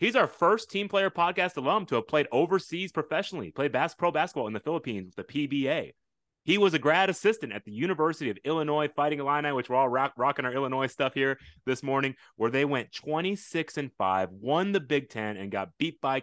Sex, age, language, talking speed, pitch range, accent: male, 30-49, English, 205 wpm, 115-160 Hz, American